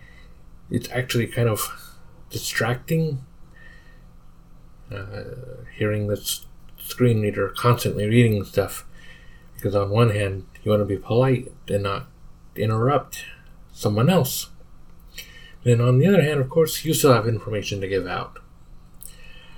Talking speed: 125 wpm